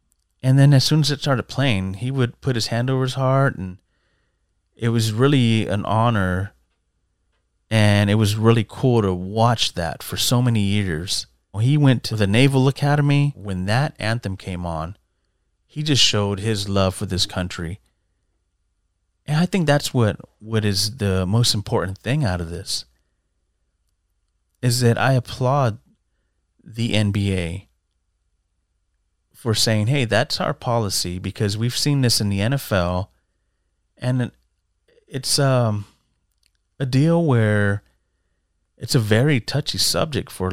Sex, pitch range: male, 90-120 Hz